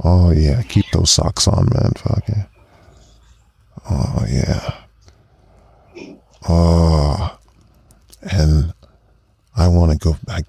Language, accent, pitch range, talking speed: English, American, 80-105 Hz, 105 wpm